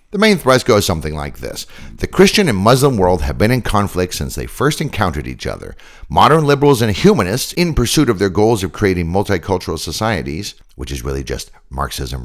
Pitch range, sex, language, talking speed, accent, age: 80-130 Hz, male, English, 195 wpm, American, 60-79